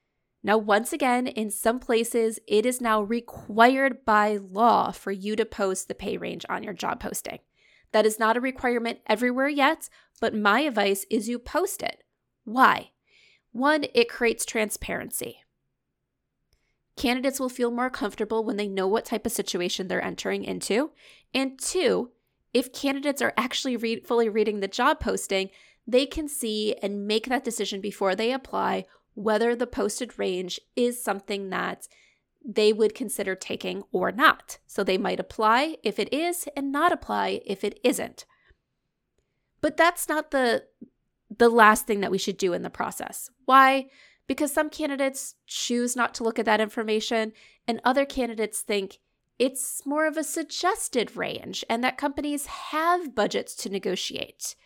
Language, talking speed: English, 160 wpm